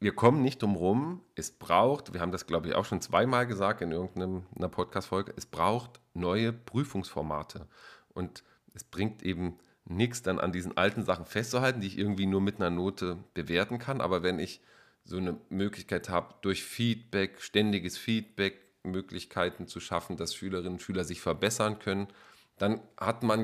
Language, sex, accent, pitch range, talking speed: German, male, German, 90-115 Hz, 170 wpm